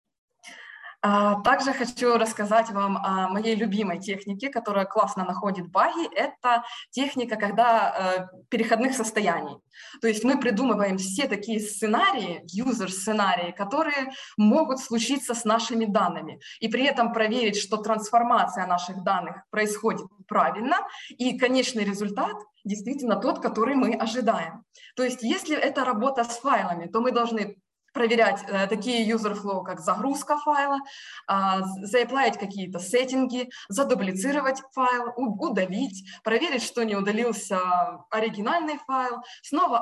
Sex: female